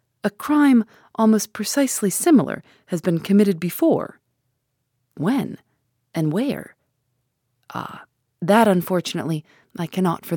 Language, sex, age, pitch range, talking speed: English, female, 30-49, 150-210 Hz, 105 wpm